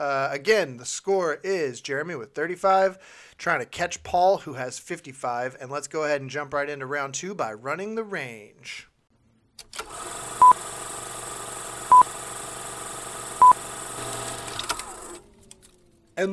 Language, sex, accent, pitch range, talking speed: English, male, American, 135-175 Hz, 110 wpm